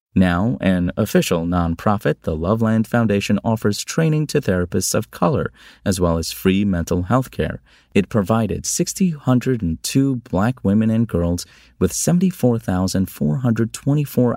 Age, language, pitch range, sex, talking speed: 30-49, English, 85-115 Hz, male, 135 wpm